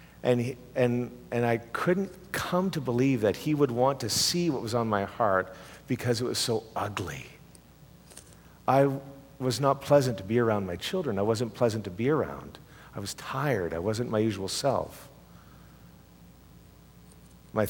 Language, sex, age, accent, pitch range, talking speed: English, male, 50-69, American, 95-130 Hz, 170 wpm